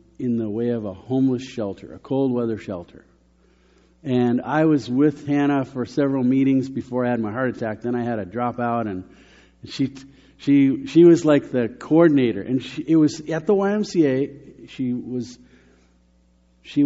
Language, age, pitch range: English, 50-69, 125-180 Hz